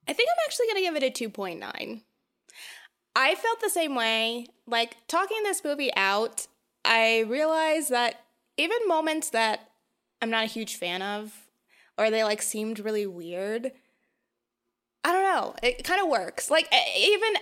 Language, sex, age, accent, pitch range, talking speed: English, female, 20-39, American, 215-275 Hz, 160 wpm